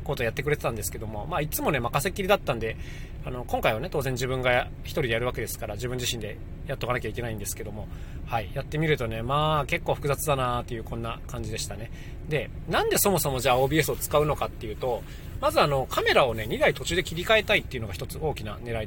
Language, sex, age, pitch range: Japanese, male, 20-39, 110-160 Hz